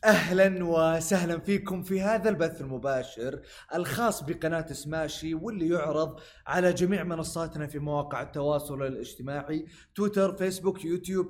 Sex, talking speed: male, 115 wpm